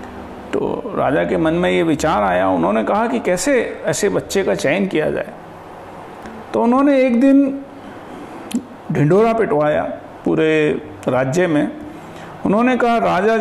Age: 50-69